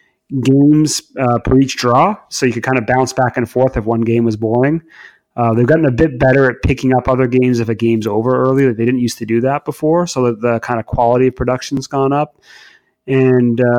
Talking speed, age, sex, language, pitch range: 230 wpm, 30-49, male, English, 110-130 Hz